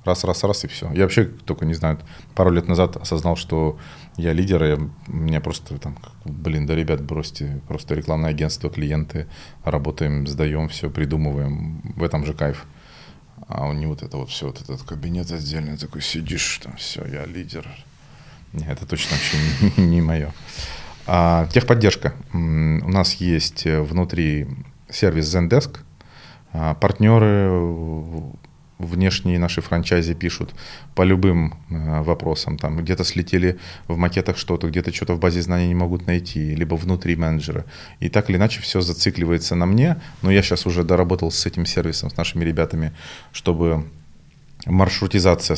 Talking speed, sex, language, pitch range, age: 150 wpm, male, Russian, 80-90 Hz, 30-49